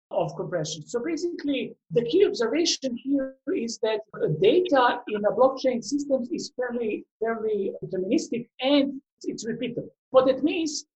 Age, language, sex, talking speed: 50-69, English, male, 135 wpm